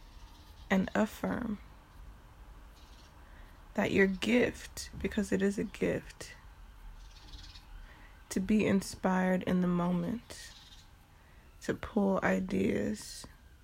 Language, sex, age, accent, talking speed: English, female, 20-39, American, 85 wpm